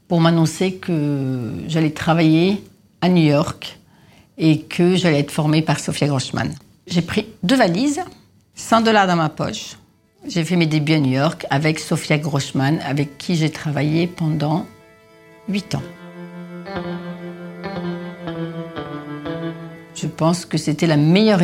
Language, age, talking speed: French, 60-79, 135 wpm